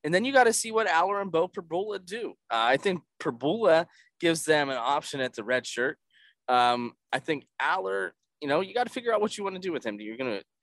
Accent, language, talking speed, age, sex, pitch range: American, English, 250 wpm, 20-39, male, 135-200 Hz